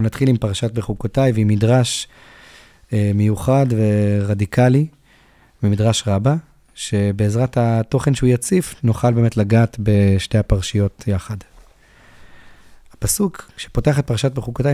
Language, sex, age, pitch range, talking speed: Hebrew, male, 30-49, 105-130 Hz, 105 wpm